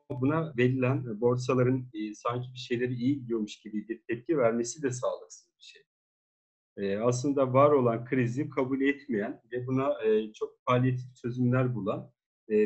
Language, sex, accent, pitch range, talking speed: Turkish, male, native, 120-145 Hz, 145 wpm